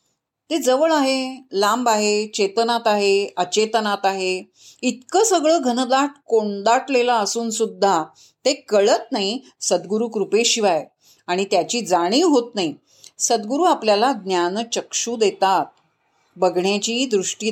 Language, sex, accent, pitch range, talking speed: Marathi, female, native, 190-255 Hz, 80 wpm